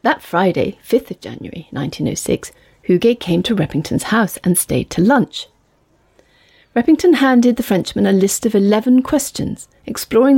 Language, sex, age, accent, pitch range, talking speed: English, female, 40-59, British, 175-230 Hz, 145 wpm